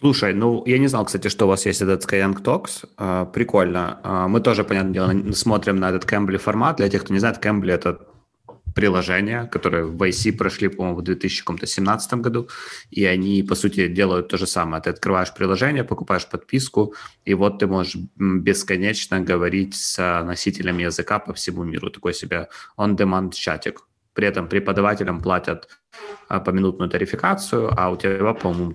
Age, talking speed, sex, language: 20-39, 165 wpm, male, Russian